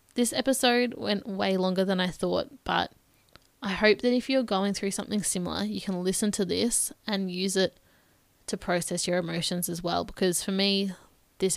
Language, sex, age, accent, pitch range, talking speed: English, female, 10-29, Australian, 180-210 Hz, 185 wpm